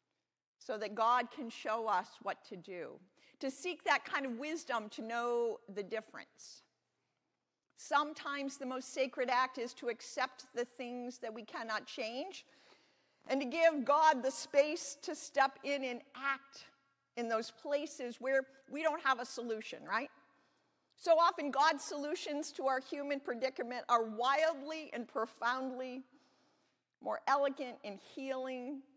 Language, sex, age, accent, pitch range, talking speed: English, female, 50-69, American, 210-275 Hz, 145 wpm